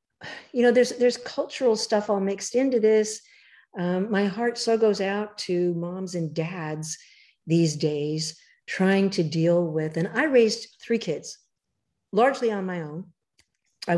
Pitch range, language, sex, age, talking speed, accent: 175-225 Hz, English, female, 50-69, 155 wpm, American